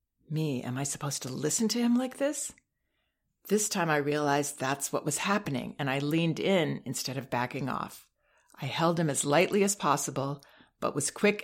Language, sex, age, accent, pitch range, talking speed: English, female, 40-59, American, 140-185 Hz, 190 wpm